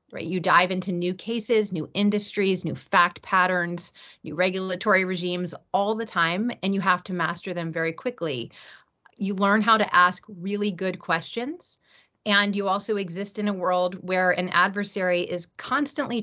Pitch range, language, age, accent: 175-210 Hz, English, 30-49, American